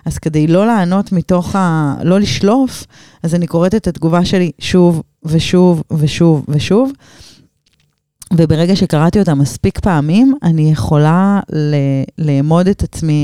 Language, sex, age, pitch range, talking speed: Hebrew, female, 30-49, 145-180 Hz, 130 wpm